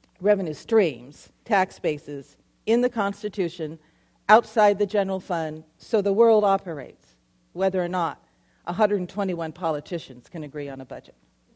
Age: 50-69